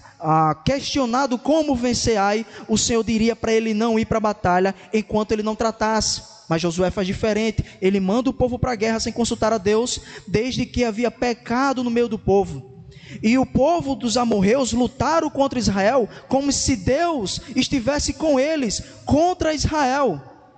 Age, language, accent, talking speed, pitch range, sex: 20-39, Portuguese, Brazilian, 165 wpm, 215-270 Hz, male